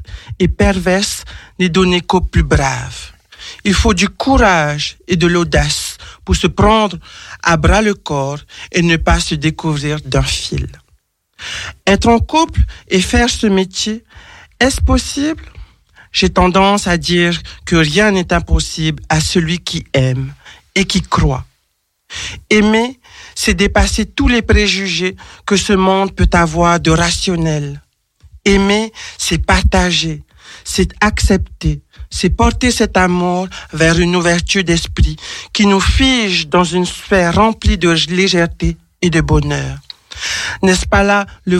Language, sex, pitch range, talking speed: French, male, 170-210 Hz, 135 wpm